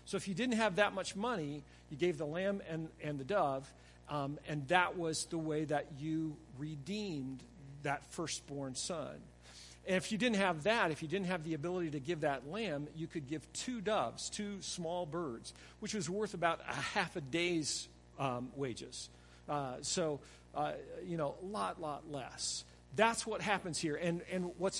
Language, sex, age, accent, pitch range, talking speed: English, male, 50-69, American, 135-185 Hz, 190 wpm